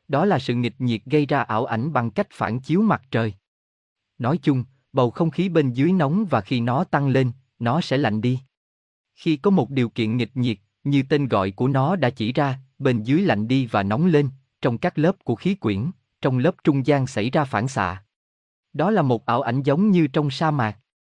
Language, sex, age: Vietnamese, male, 20-39